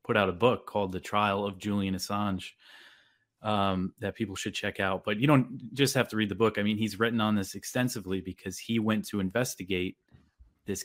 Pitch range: 95-110 Hz